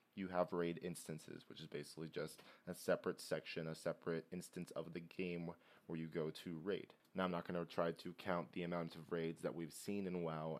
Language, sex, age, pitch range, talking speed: English, male, 20-39, 85-100 Hz, 220 wpm